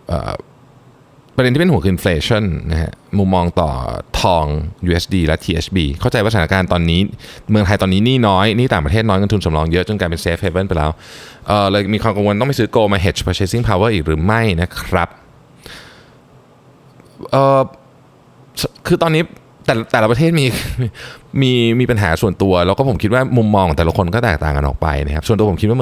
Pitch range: 85-125 Hz